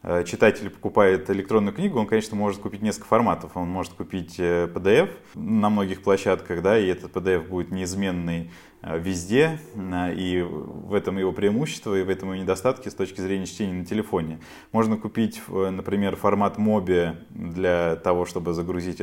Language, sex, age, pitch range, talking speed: Russian, male, 20-39, 90-105 Hz, 155 wpm